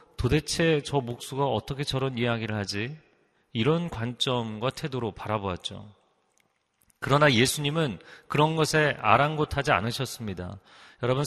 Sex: male